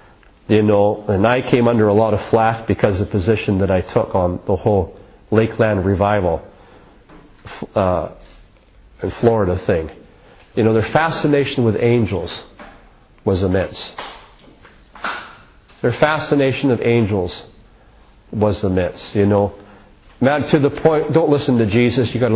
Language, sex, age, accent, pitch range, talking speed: English, male, 40-59, American, 105-145 Hz, 135 wpm